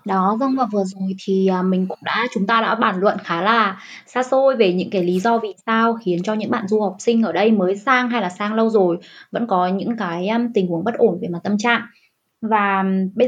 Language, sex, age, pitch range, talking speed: Vietnamese, female, 20-39, 185-235 Hz, 250 wpm